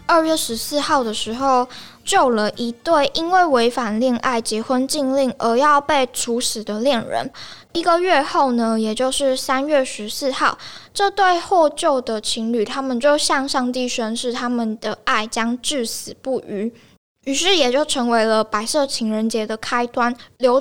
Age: 10-29